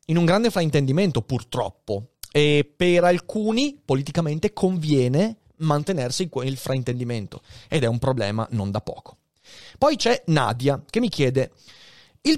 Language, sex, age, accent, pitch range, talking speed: Italian, male, 30-49, native, 120-175 Hz, 135 wpm